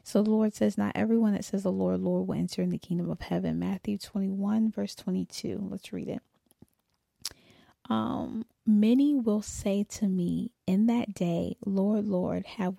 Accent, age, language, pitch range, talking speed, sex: American, 20-39, English, 180-215 Hz, 175 wpm, female